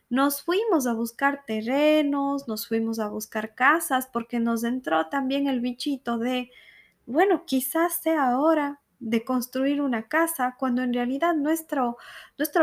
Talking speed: 145 wpm